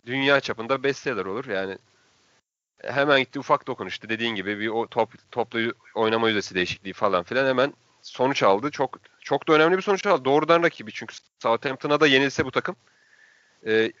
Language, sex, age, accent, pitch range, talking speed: Turkish, male, 30-49, native, 115-150 Hz, 165 wpm